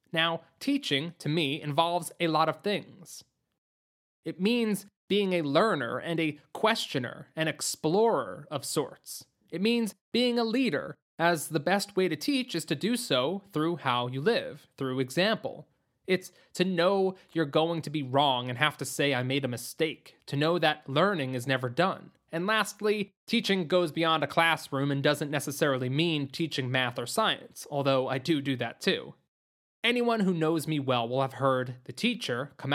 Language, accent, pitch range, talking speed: English, American, 135-185 Hz, 180 wpm